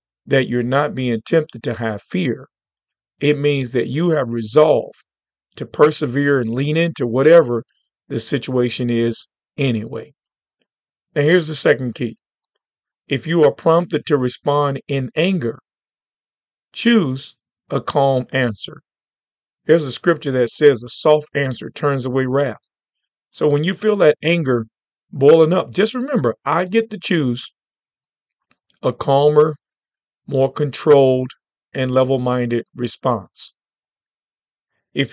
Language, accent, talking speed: English, American, 130 wpm